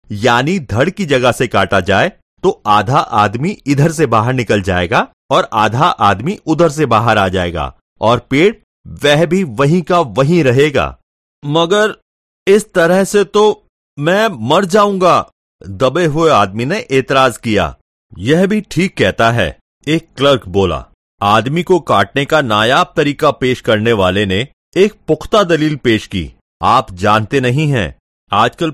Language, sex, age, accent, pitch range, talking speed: Hindi, male, 40-59, native, 110-170 Hz, 150 wpm